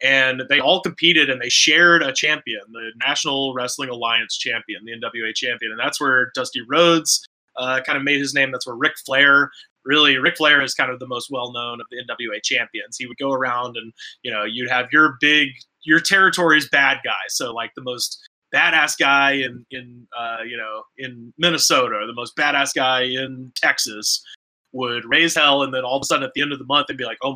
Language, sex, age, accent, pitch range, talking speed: English, male, 20-39, American, 125-145 Hz, 215 wpm